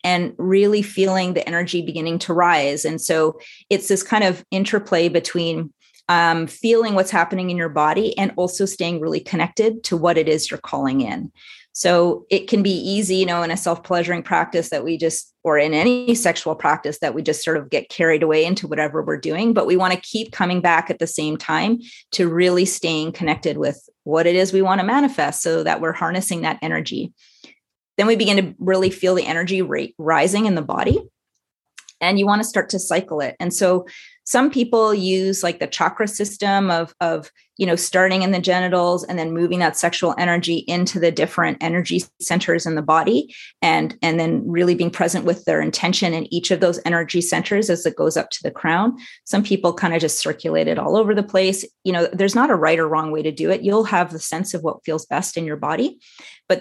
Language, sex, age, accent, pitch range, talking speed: English, female, 30-49, American, 165-195 Hz, 215 wpm